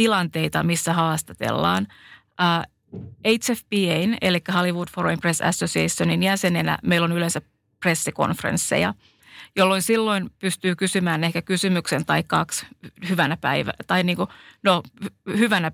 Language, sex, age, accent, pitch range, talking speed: Finnish, female, 30-49, native, 165-200 Hz, 110 wpm